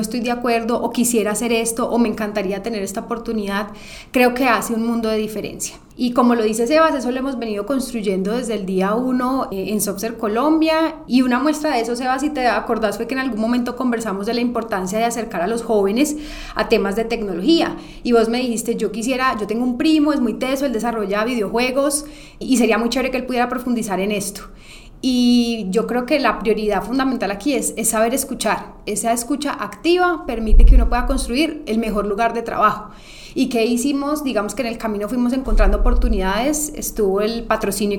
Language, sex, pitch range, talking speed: English, female, 210-255 Hz, 205 wpm